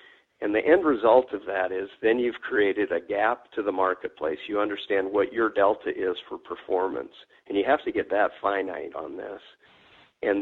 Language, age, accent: English, 50-69, American